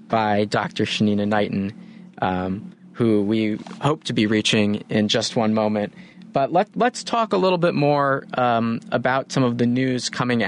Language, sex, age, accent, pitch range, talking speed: English, male, 20-39, American, 110-155 Hz, 165 wpm